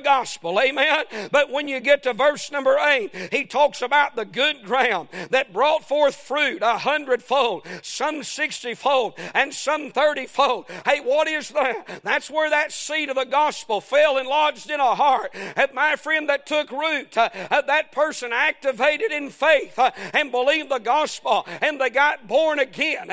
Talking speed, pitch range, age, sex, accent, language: 170 wpm, 260-310 Hz, 50-69, male, American, English